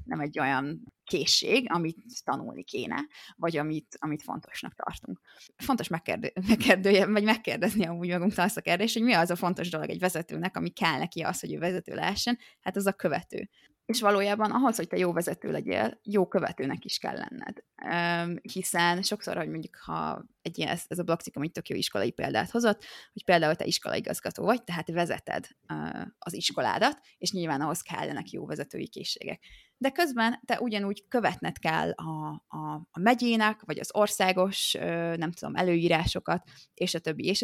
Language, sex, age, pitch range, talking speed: Hungarian, female, 20-39, 170-215 Hz, 180 wpm